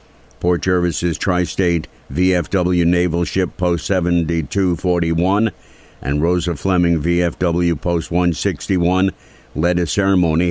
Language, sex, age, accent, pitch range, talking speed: English, male, 60-79, American, 80-95 Hz, 85 wpm